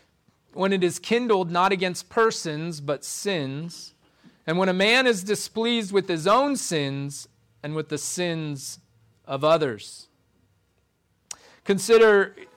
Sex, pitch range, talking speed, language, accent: male, 140-185 Hz, 125 wpm, English, American